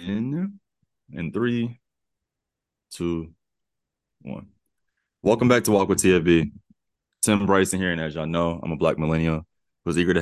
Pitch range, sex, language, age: 80-100 Hz, male, English, 20-39